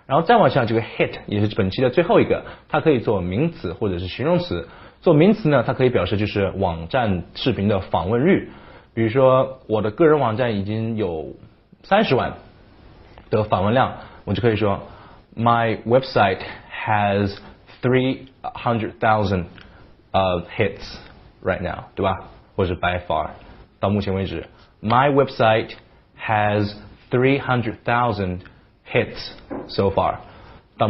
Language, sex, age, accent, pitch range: Chinese, male, 20-39, native, 100-120 Hz